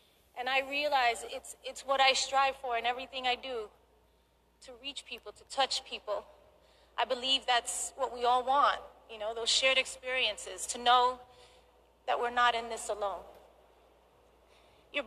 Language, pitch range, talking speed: English, 225-265 Hz, 160 wpm